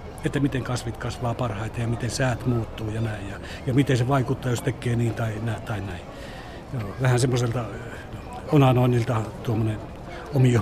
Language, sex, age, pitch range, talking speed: Finnish, male, 60-79, 115-145 Hz, 170 wpm